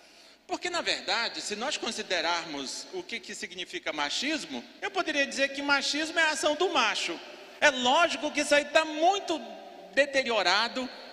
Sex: male